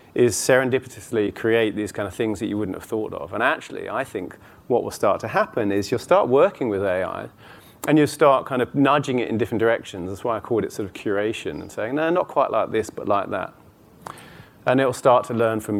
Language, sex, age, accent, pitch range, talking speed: English, male, 30-49, British, 105-125 Hz, 240 wpm